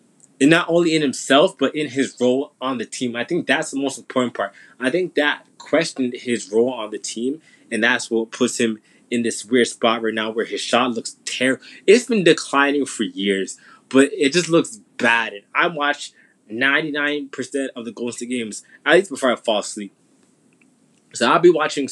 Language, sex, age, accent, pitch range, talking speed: English, male, 20-39, American, 120-165 Hz, 200 wpm